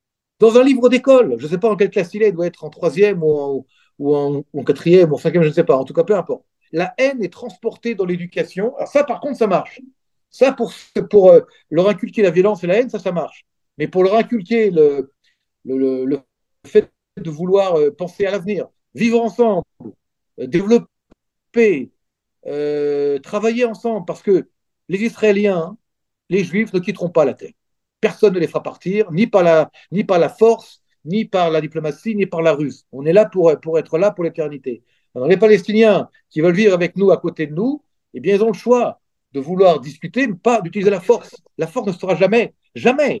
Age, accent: 50-69, French